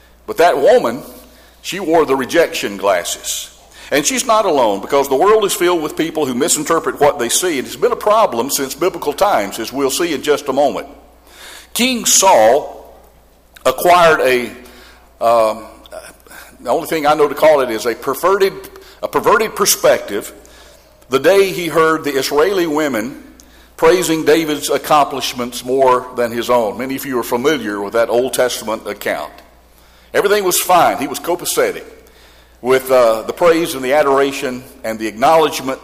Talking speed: 165 wpm